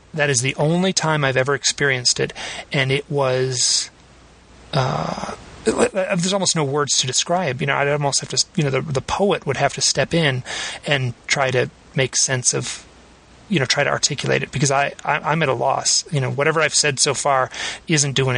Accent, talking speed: American, 205 wpm